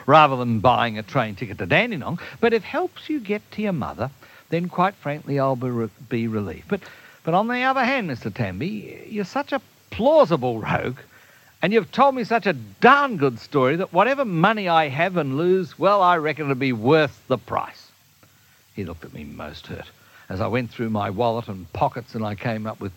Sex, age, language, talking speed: male, 60-79, English, 210 wpm